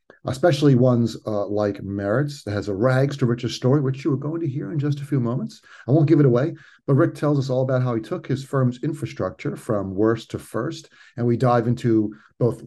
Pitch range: 105-145 Hz